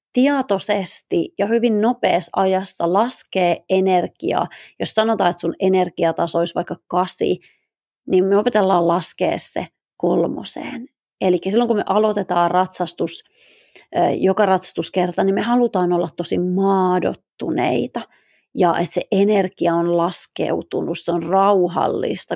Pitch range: 175-220 Hz